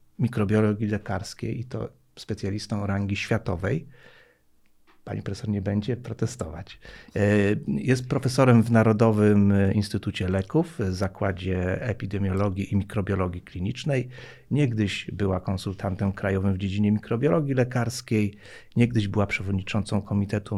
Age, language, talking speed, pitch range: 40-59, Polish, 105 wpm, 100-125 Hz